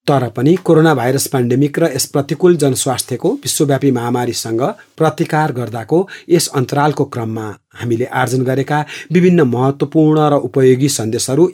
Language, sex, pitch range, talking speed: English, male, 125-150 Hz, 140 wpm